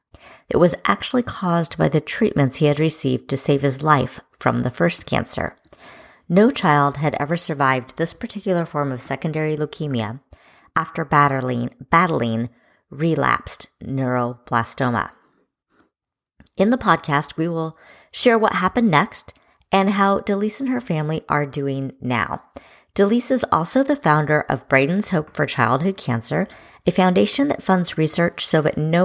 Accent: American